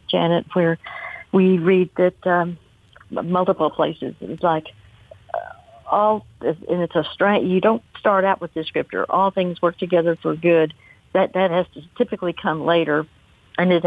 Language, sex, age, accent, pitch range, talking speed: English, female, 60-79, American, 160-195 Hz, 165 wpm